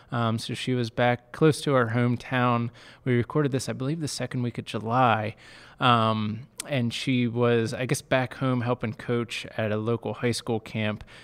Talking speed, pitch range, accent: 185 wpm, 115-130 Hz, American